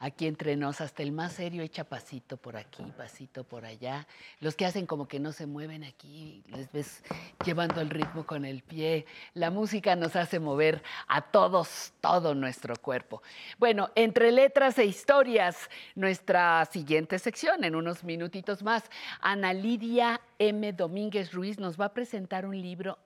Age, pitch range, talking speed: 50-69, 155-215 Hz, 165 wpm